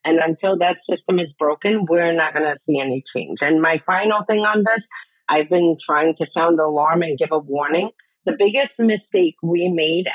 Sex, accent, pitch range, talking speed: female, American, 150-185 Hz, 205 wpm